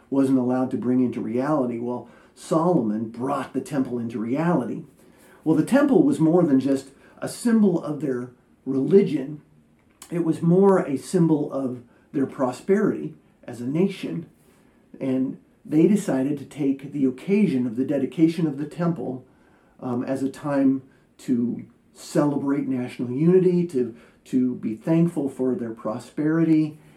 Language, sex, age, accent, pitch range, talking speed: English, male, 50-69, American, 125-155 Hz, 140 wpm